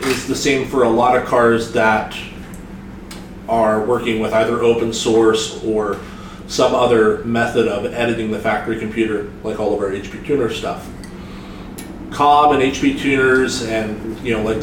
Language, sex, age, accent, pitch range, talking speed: English, male, 30-49, American, 105-125 Hz, 160 wpm